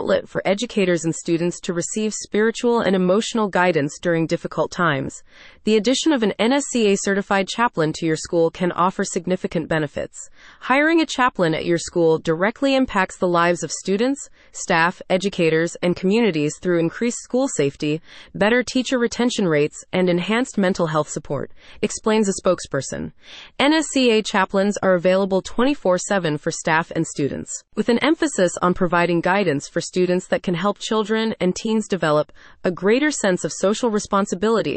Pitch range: 170-225 Hz